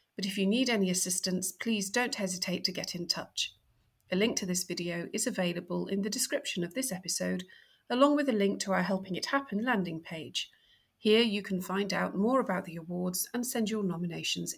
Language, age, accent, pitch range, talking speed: English, 40-59, British, 180-220 Hz, 205 wpm